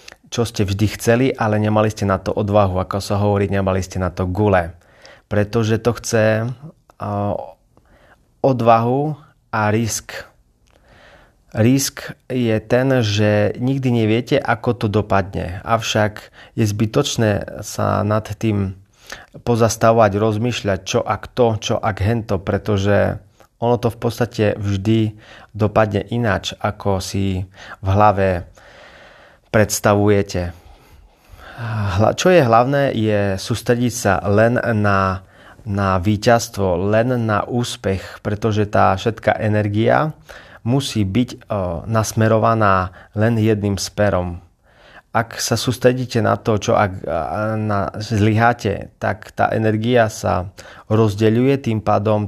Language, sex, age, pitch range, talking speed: Slovak, male, 30-49, 100-115 Hz, 115 wpm